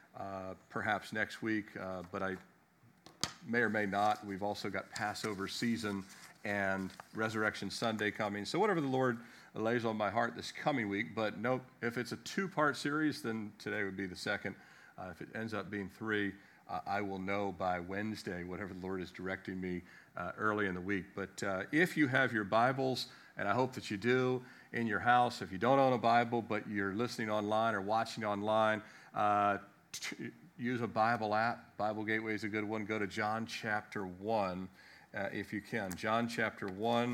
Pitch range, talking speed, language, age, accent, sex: 95-115 Hz, 195 wpm, English, 50-69, American, male